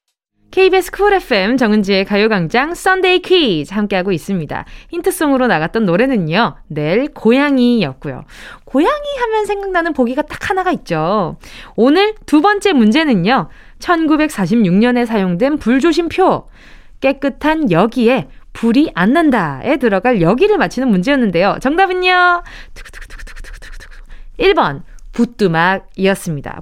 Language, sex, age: Korean, female, 20-39